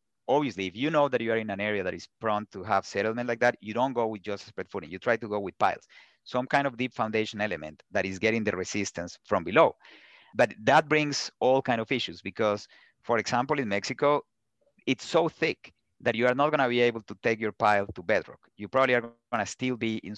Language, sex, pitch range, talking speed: English, male, 100-125 Hz, 240 wpm